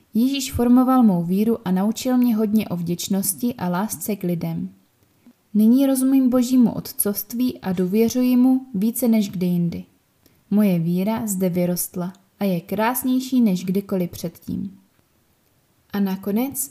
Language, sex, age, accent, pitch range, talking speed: Czech, female, 20-39, native, 185-240 Hz, 135 wpm